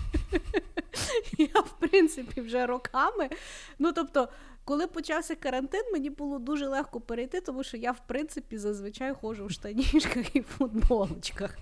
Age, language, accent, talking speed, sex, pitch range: 30-49, Ukrainian, native, 135 wpm, female, 185-270 Hz